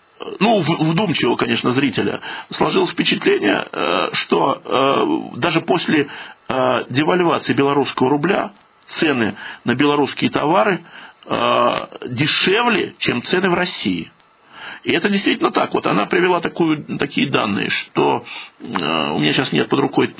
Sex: male